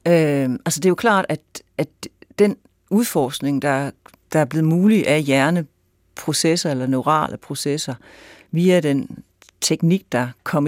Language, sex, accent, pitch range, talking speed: Danish, female, native, 135-165 Hz, 140 wpm